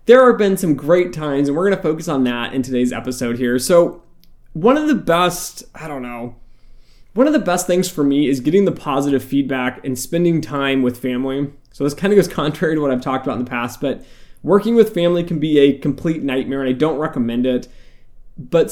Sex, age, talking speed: male, 20-39, 225 wpm